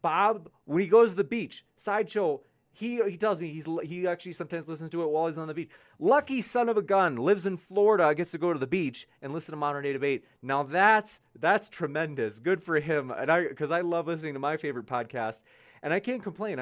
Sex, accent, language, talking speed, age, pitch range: male, American, English, 235 wpm, 30-49, 135-195 Hz